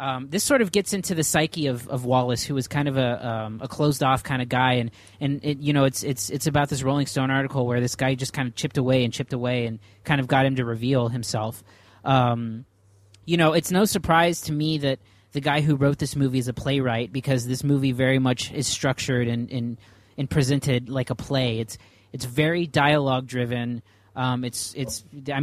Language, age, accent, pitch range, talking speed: English, 20-39, American, 120-145 Hz, 235 wpm